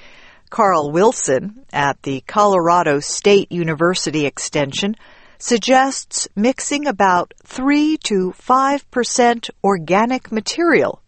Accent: American